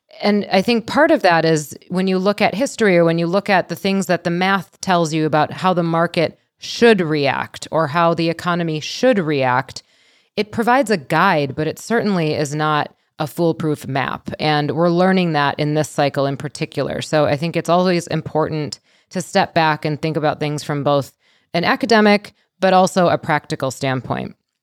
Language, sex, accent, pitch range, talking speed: English, female, American, 160-200 Hz, 190 wpm